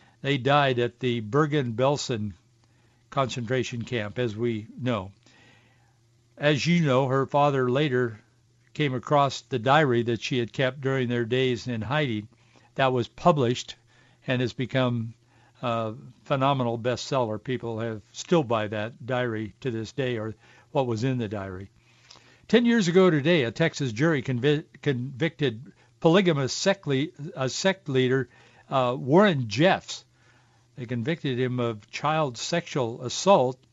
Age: 60-79